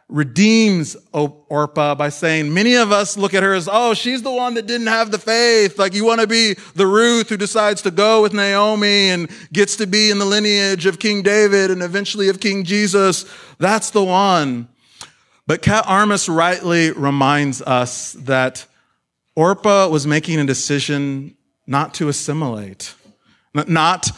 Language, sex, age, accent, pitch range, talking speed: English, male, 30-49, American, 140-195 Hz, 165 wpm